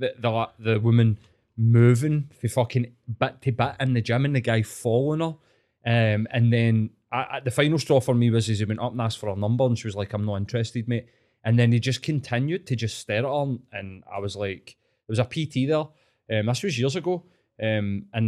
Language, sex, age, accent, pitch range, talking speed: English, male, 20-39, British, 110-135 Hz, 235 wpm